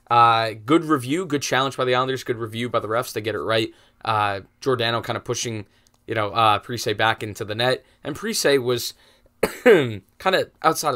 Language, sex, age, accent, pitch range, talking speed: English, male, 20-39, American, 115-140 Hz, 195 wpm